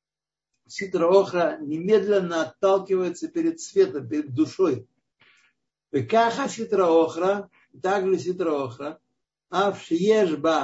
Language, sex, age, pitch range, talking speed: Russian, male, 60-79, 150-200 Hz, 85 wpm